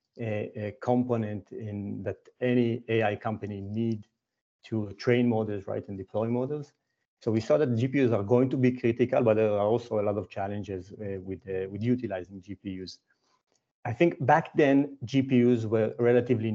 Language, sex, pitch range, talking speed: English, male, 105-130 Hz, 170 wpm